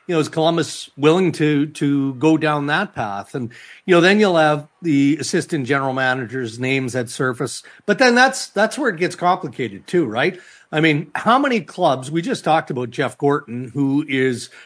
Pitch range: 130-165 Hz